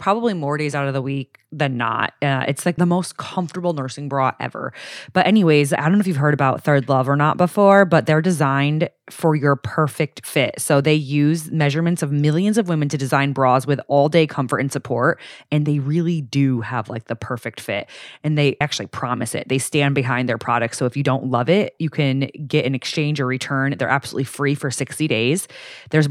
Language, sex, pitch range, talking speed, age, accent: English, female, 135-160 Hz, 215 wpm, 20-39, American